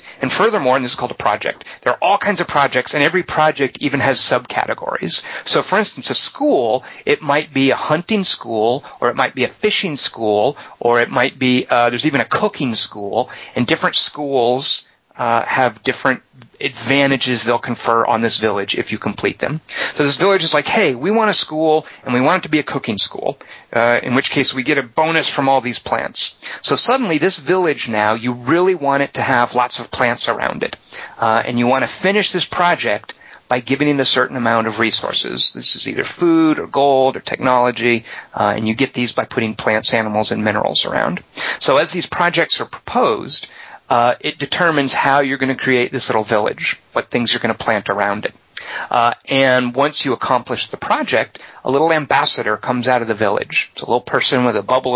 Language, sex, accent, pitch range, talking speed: English, male, American, 120-140 Hz, 215 wpm